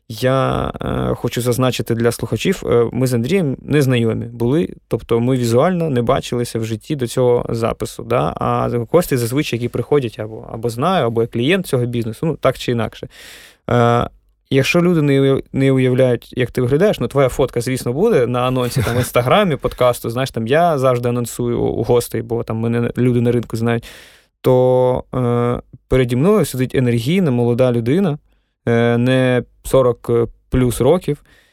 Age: 20-39